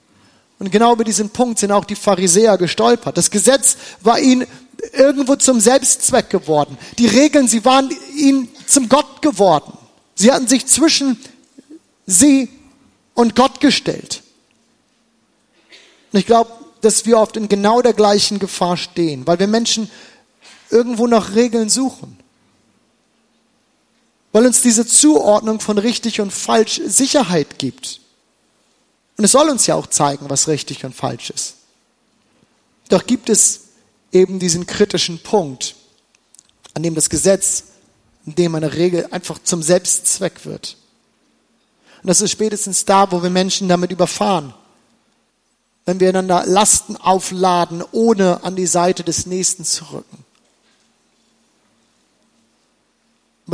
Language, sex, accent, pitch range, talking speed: German, male, German, 180-245 Hz, 130 wpm